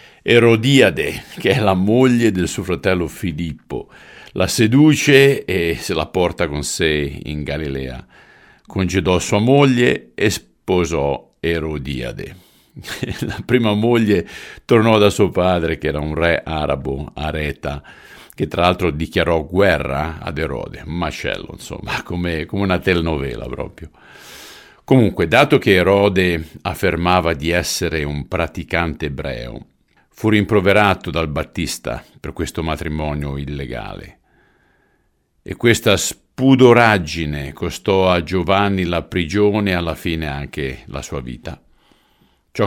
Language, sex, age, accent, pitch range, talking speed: Italian, male, 50-69, native, 75-100 Hz, 120 wpm